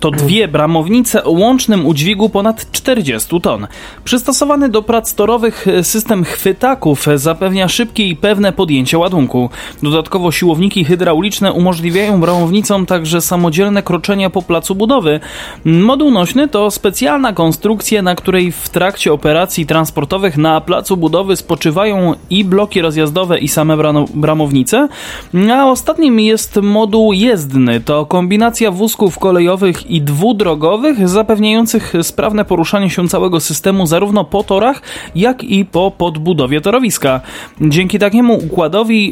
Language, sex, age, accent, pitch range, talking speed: Polish, male, 20-39, native, 170-215 Hz, 125 wpm